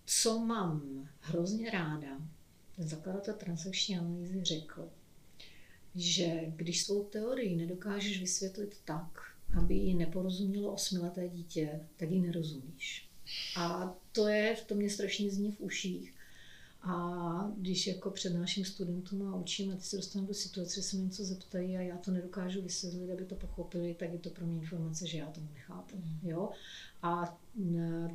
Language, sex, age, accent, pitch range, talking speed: Czech, female, 40-59, native, 170-200 Hz, 155 wpm